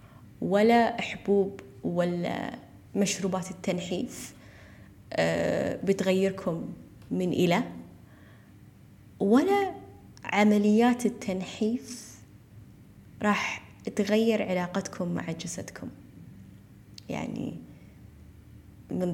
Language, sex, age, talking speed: Arabic, female, 20-39, 60 wpm